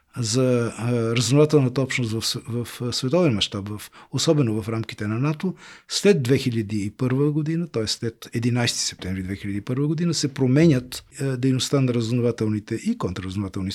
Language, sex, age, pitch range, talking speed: Bulgarian, male, 40-59, 115-150 Hz, 135 wpm